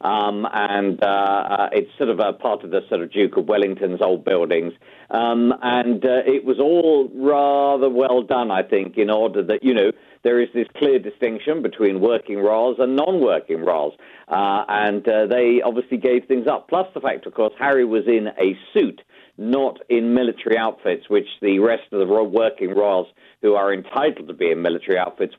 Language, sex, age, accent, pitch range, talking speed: English, male, 50-69, British, 115-150 Hz, 195 wpm